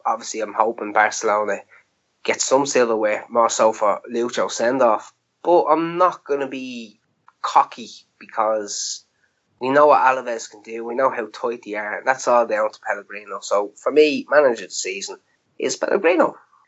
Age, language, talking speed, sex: 20-39, English, 165 wpm, male